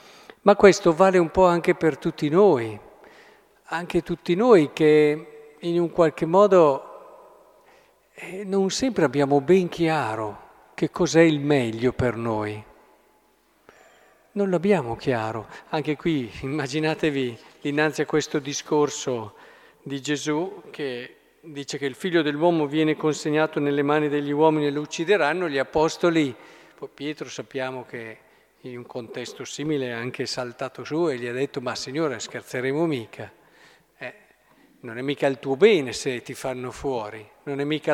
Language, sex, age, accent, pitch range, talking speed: Italian, male, 50-69, native, 140-180 Hz, 145 wpm